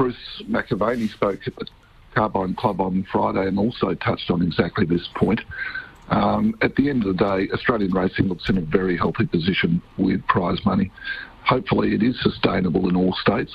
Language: English